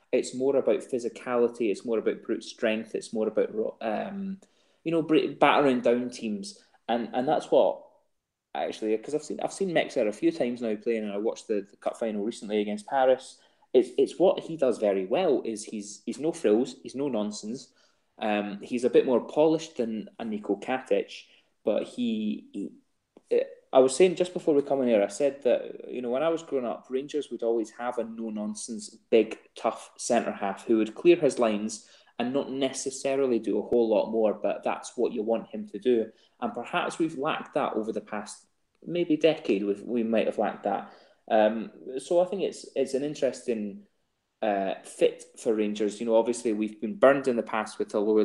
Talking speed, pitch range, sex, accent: 200 wpm, 110-150 Hz, male, British